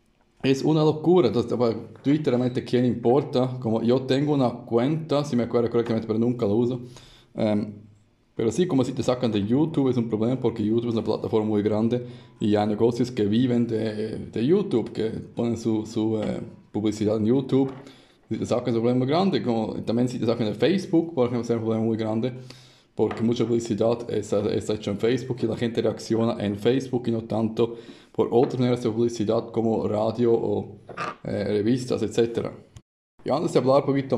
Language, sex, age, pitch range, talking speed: Spanish, male, 20-39, 110-125 Hz, 195 wpm